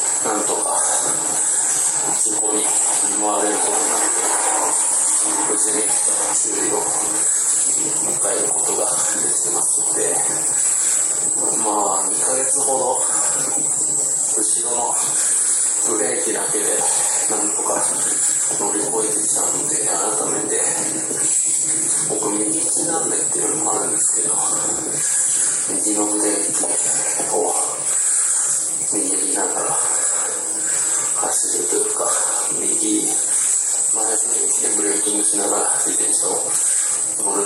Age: 40-59